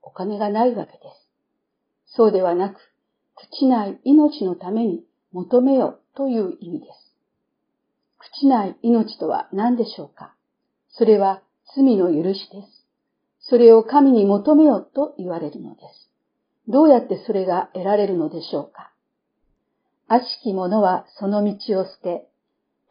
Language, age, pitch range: Japanese, 50-69, 195-255 Hz